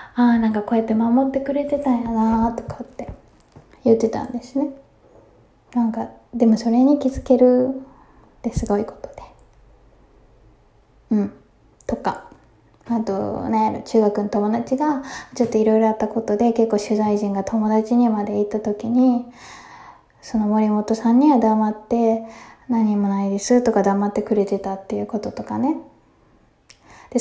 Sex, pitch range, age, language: female, 220-255 Hz, 20-39, Japanese